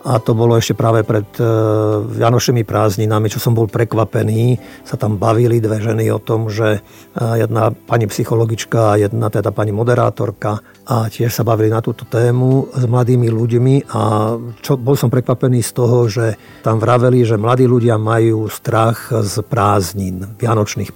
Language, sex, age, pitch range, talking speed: Slovak, male, 50-69, 115-130 Hz, 155 wpm